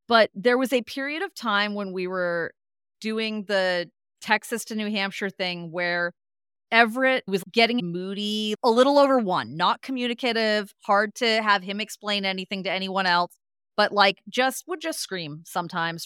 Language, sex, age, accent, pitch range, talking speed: English, female, 30-49, American, 180-225 Hz, 165 wpm